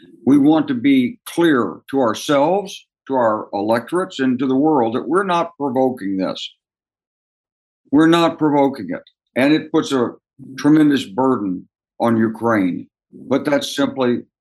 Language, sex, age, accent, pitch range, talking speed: Ukrainian, male, 60-79, American, 115-155 Hz, 140 wpm